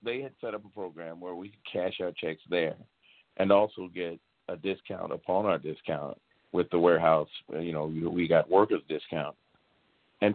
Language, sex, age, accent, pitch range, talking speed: English, male, 50-69, American, 90-110 Hz, 180 wpm